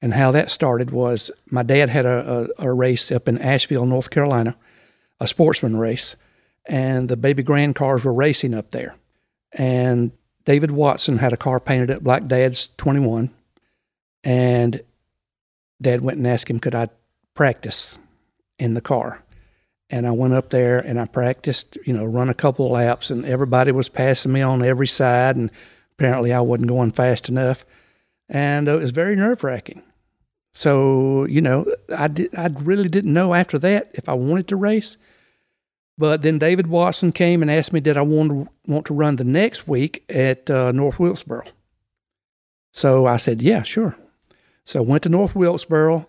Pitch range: 125-150 Hz